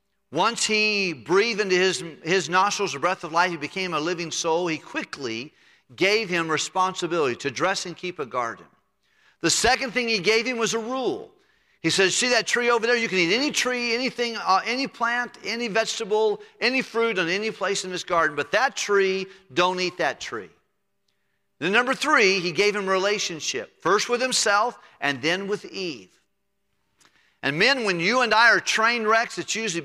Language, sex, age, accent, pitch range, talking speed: English, male, 50-69, American, 160-220 Hz, 185 wpm